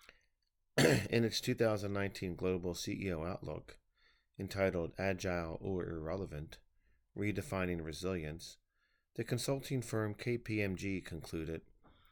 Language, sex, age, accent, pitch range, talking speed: English, male, 40-59, American, 90-110 Hz, 85 wpm